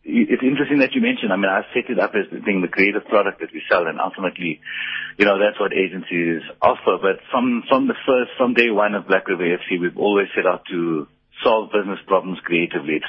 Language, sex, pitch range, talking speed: English, male, 90-140 Hz, 230 wpm